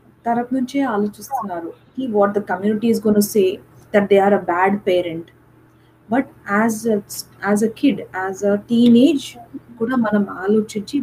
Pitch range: 200-255 Hz